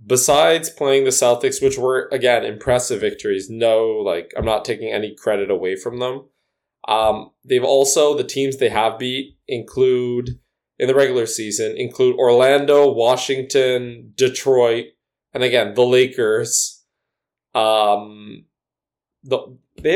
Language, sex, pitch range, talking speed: English, male, 110-145 Hz, 125 wpm